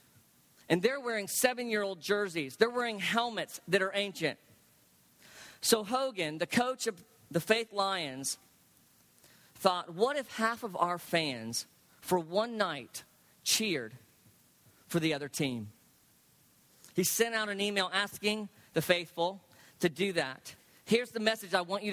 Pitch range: 155-215 Hz